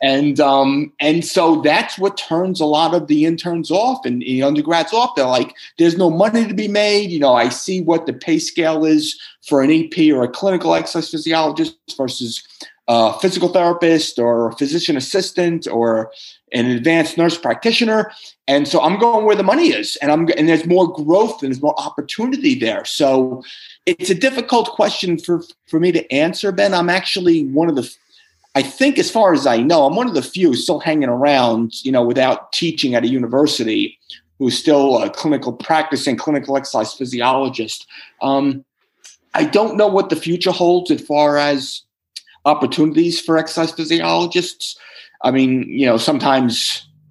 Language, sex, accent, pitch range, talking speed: English, male, American, 135-190 Hz, 180 wpm